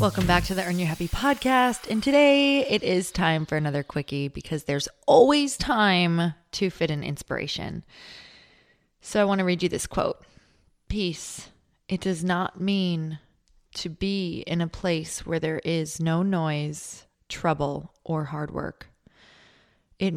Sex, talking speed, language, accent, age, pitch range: female, 155 wpm, English, American, 20-39, 160-190 Hz